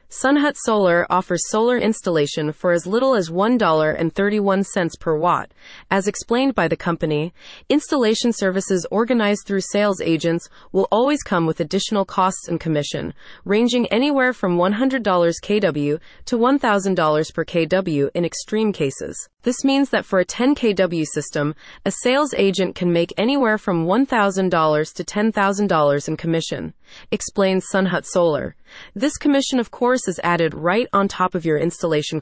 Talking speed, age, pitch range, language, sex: 145 wpm, 30-49, 170-225 Hz, English, female